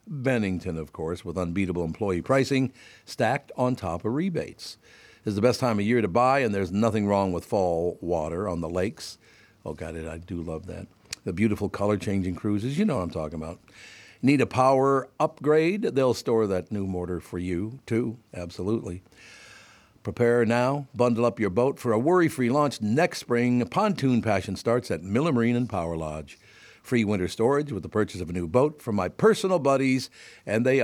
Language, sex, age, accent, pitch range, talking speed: English, male, 60-79, American, 95-135 Hz, 195 wpm